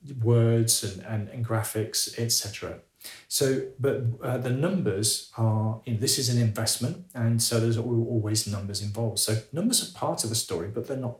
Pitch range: 105-120 Hz